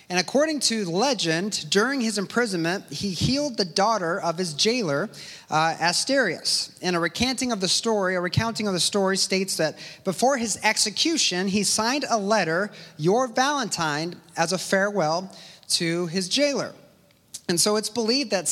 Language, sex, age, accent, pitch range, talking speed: English, male, 30-49, American, 170-220 Hz, 160 wpm